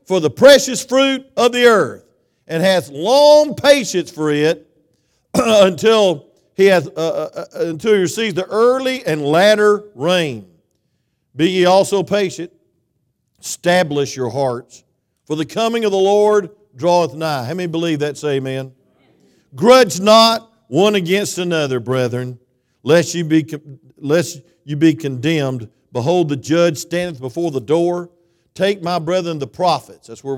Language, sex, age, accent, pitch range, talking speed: English, male, 50-69, American, 145-195 Hz, 150 wpm